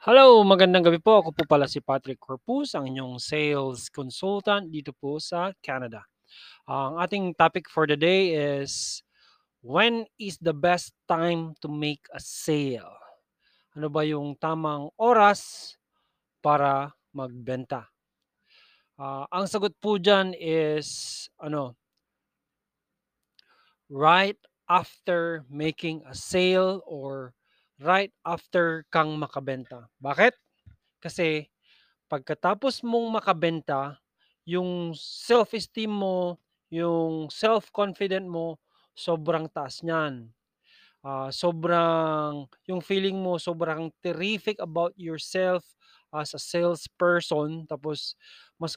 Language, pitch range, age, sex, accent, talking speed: Filipino, 150-185 Hz, 20-39, male, native, 105 wpm